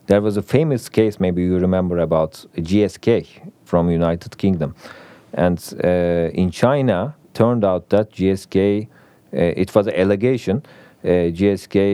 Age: 40-59